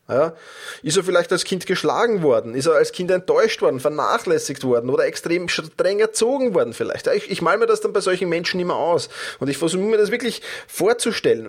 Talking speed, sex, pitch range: 205 wpm, male, 140-220 Hz